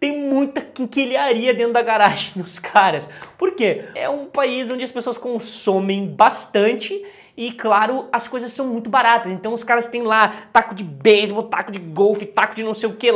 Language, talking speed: English, 190 wpm